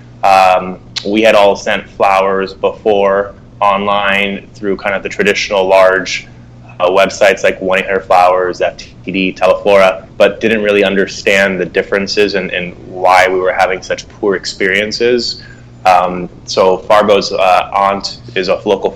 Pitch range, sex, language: 90-100 Hz, male, English